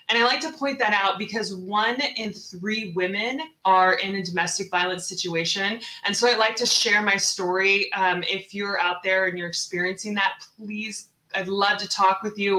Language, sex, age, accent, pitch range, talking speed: English, female, 20-39, American, 185-230 Hz, 200 wpm